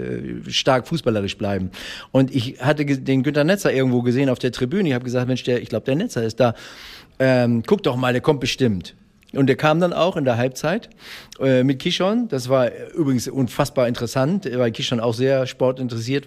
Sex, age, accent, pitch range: male, 40-59, German, 125-145 Hz